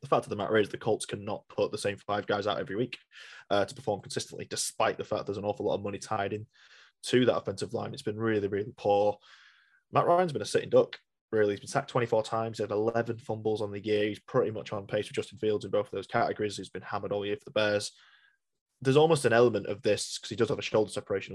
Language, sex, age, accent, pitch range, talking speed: English, male, 20-39, British, 105-135 Hz, 265 wpm